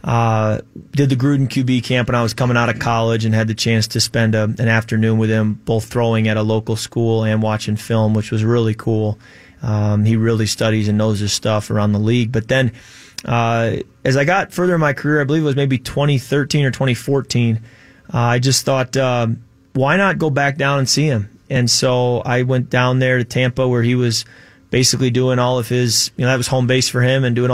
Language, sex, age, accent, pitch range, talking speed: English, male, 20-39, American, 115-135 Hz, 225 wpm